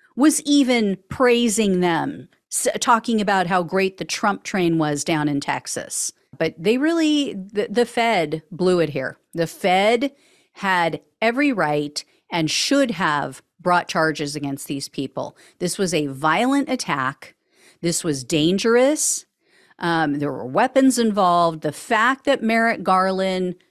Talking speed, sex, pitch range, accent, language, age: 140 wpm, female, 165-245 Hz, American, English, 40-59